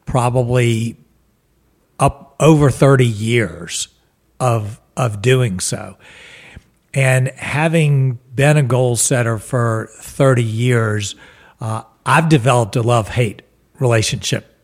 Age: 50-69